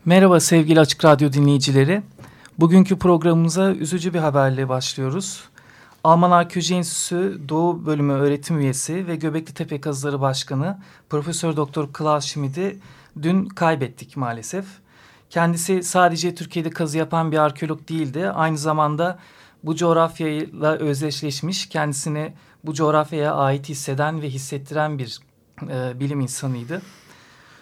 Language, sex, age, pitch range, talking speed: Turkish, male, 40-59, 140-170 Hz, 115 wpm